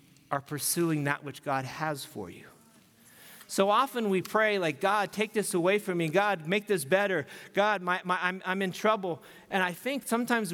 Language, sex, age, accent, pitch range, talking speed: English, male, 40-59, American, 170-205 Hz, 195 wpm